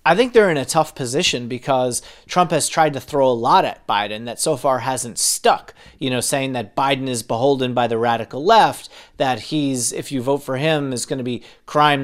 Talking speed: 225 wpm